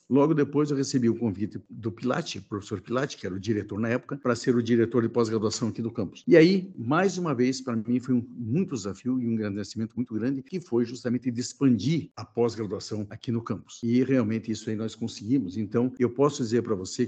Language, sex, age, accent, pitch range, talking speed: Portuguese, male, 60-79, Brazilian, 110-135 Hz, 220 wpm